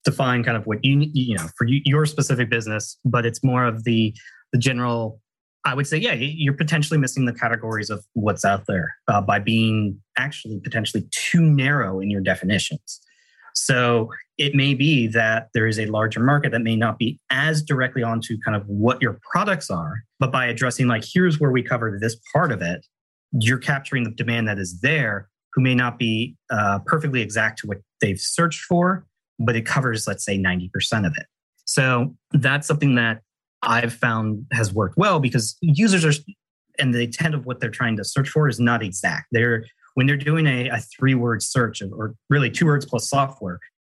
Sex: male